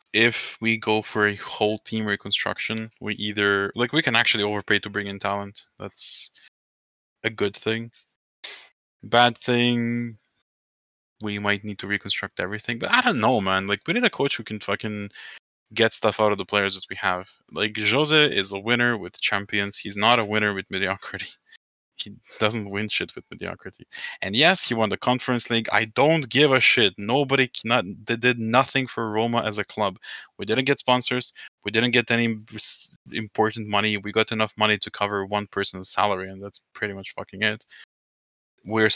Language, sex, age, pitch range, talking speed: English, male, 20-39, 100-115 Hz, 180 wpm